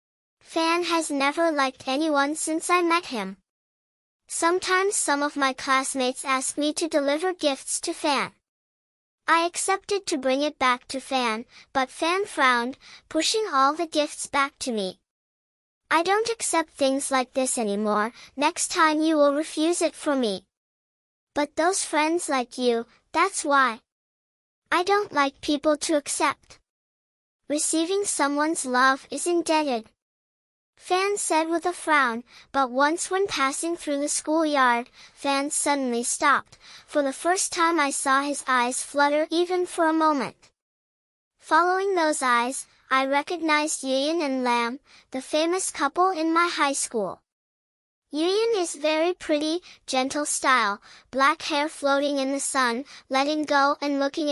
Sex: male